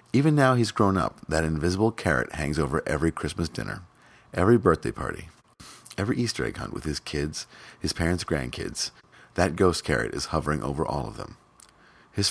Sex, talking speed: male, 175 wpm